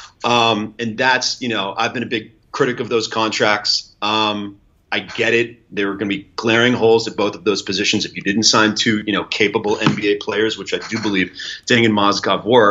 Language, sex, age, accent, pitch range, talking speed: English, male, 30-49, American, 105-125 Hz, 220 wpm